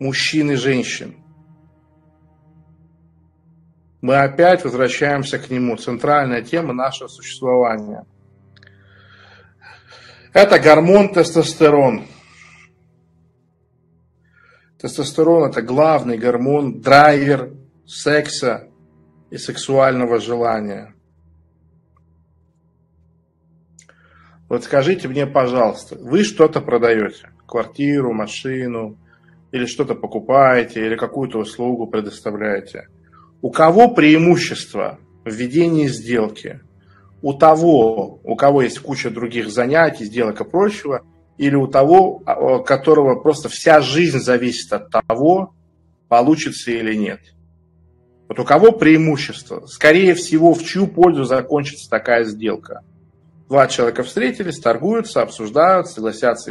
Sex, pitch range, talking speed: male, 100-150 Hz, 95 wpm